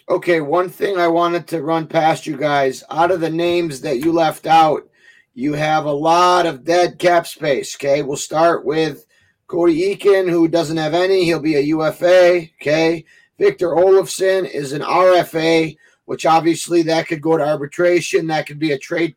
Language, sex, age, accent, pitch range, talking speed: English, male, 30-49, American, 155-175 Hz, 180 wpm